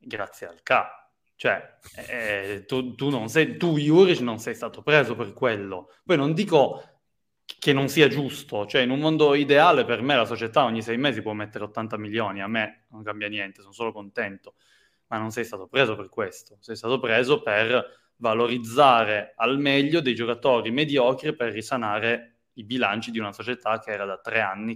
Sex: male